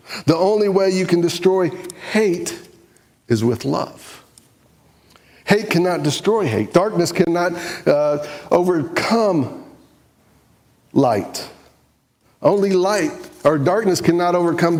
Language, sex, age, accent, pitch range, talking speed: English, male, 50-69, American, 125-175 Hz, 100 wpm